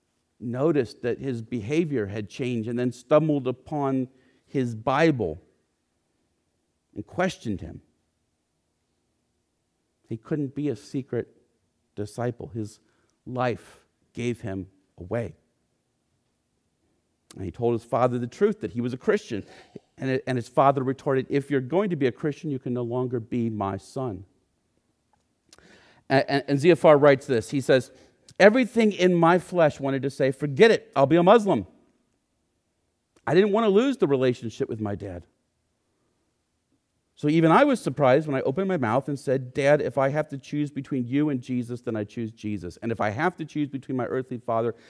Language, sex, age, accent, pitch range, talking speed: English, male, 50-69, American, 105-140 Hz, 160 wpm